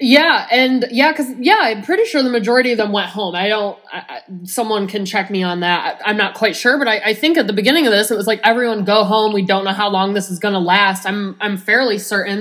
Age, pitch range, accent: 20-39, 190-220 Hz, American